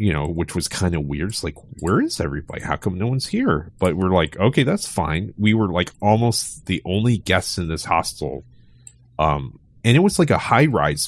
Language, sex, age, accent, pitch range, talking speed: English, male, 30-49, American, 85-125 Hz, 220 wpm